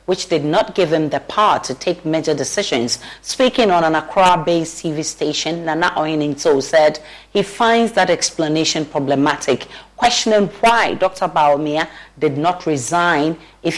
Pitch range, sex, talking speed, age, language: 145-180 Hz, female, 140 wpm, 40-59, English